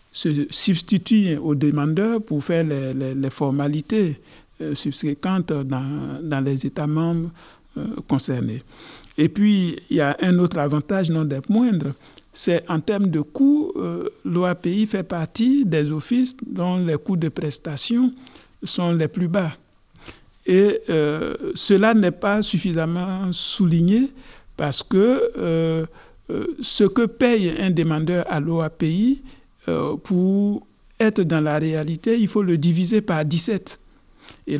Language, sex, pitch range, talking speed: French, male, 155-215 Hz, 140 wpm